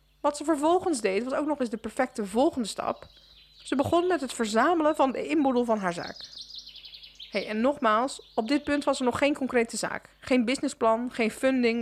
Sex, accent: female, Dutch